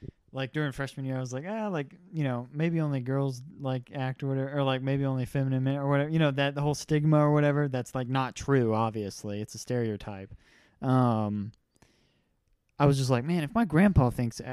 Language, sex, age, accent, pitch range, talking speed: English, male, 20-39, American, 120-145 Hz, 215 wpm